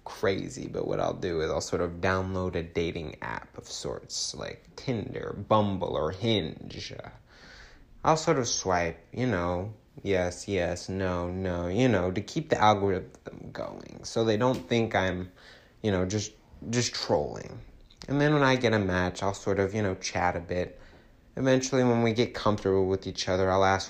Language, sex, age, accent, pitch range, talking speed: English, male, 20-39, American, 90-110 Hz, 180 wpm